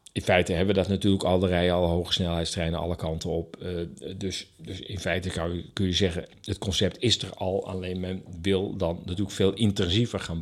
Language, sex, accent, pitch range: Dutch, male, Dutch, 85-100 Hz